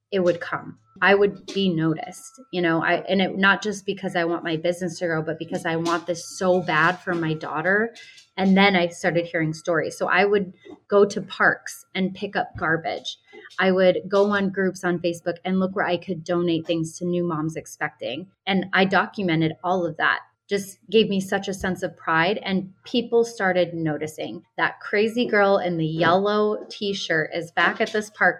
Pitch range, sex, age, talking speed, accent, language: 175-210 Hz, female, 20-39, 200 wpm, American, English